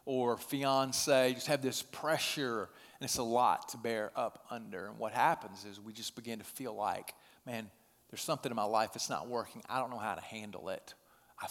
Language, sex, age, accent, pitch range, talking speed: English, male, 40-59, American, 125-150 Hz, 215 wpm